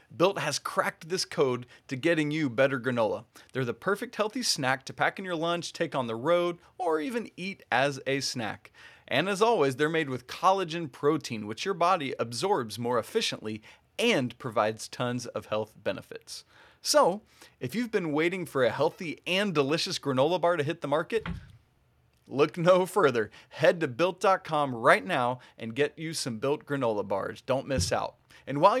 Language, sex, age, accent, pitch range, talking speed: English, male, 30-49, American, 135-190 Hz, 180 wpm